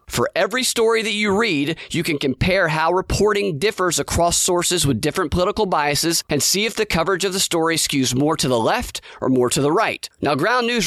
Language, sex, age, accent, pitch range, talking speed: English, male, 30-49, American, 155-200 Hz, 215 wpm